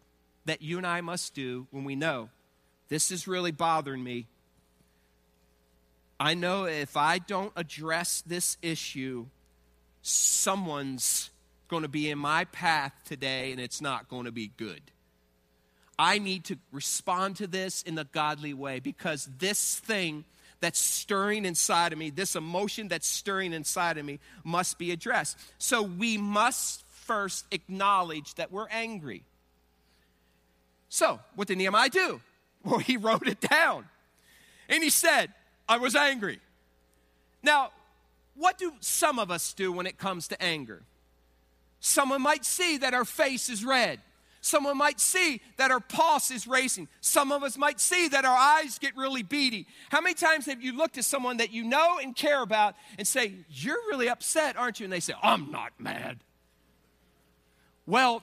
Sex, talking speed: male, 160 wpm